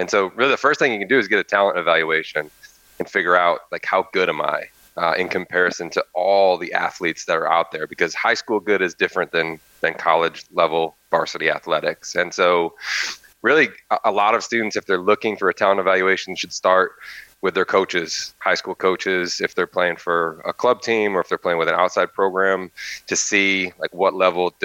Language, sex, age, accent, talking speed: English, male, 30-49, American, 210 wpm